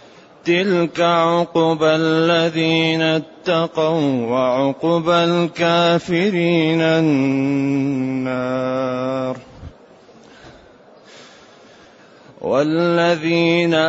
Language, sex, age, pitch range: Arabic, male, 30-49, 145-180 Hz